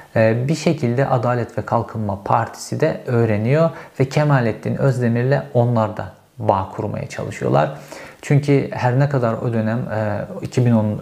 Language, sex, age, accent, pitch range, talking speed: Turkish, male, 50-69, native, 110-135 Hz, 125 wpm